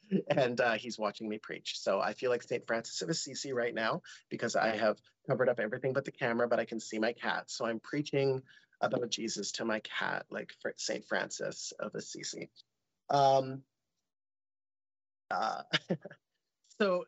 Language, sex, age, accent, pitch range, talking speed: English, male, 30-49, American, 115-140 Hz, 165 wpm